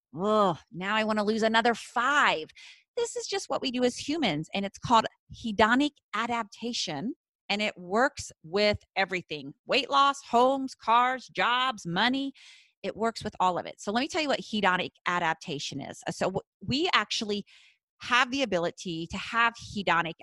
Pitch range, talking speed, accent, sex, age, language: 170-225 Hz, 165 wpm, American, female, 30-49, English